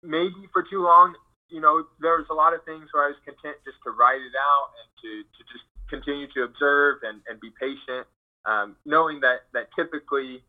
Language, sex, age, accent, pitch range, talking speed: English, male, 20-39, American, 120-155 Hz, 210 wpm